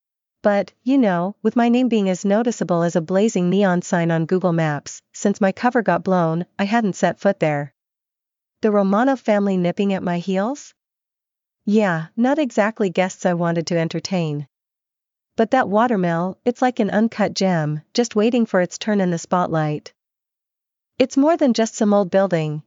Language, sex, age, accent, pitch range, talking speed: English, female, 40-59, American, 170-225 Hz, 170 wpm